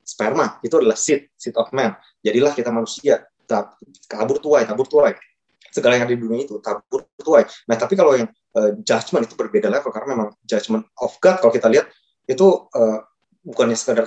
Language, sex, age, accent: Indonesian, male, 20-39, native